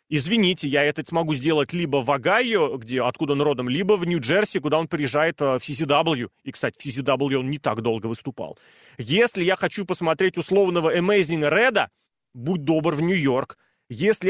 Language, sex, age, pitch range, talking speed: Russian, male, 30-49, 150-190 Hz, 170 wpm